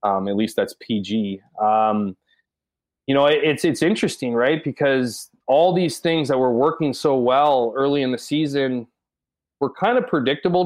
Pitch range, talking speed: 110-140 Hz, 170 wpm